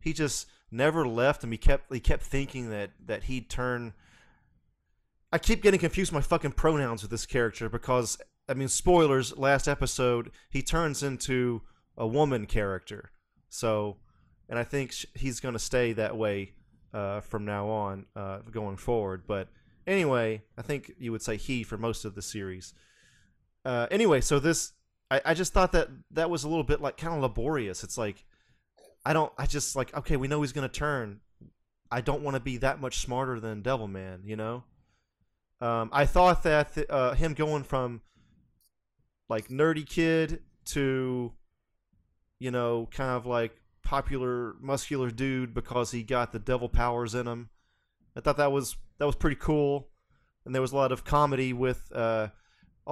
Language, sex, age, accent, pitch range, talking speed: English, male, 30-49, American, 115-140 Hz, 175 wpm